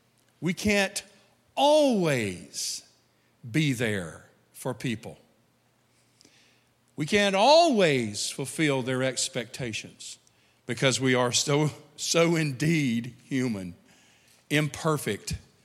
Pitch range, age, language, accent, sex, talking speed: 125-170 Hz, 50-69, English, American, male, 80 wpm